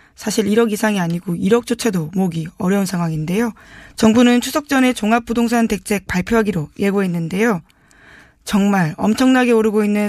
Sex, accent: female, native